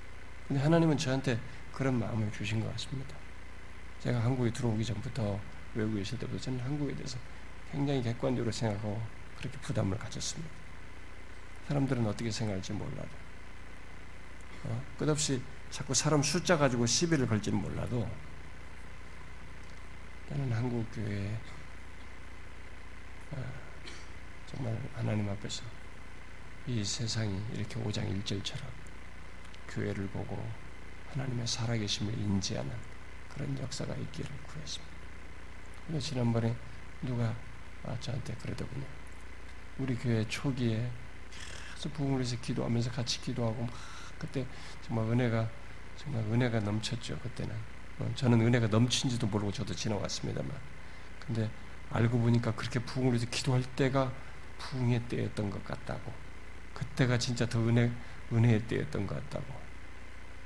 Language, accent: Korean, native